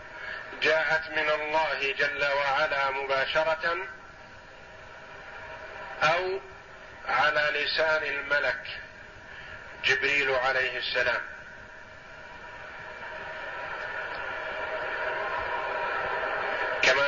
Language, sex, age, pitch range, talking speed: Arabic, male, 50-69, 135-165 Hz, 50 wpm